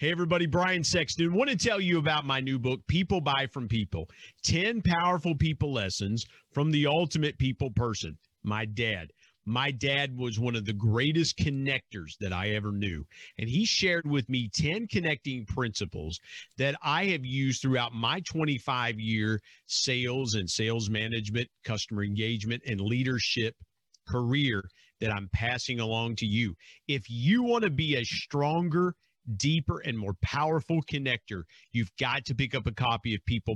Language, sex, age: English, male, 50-69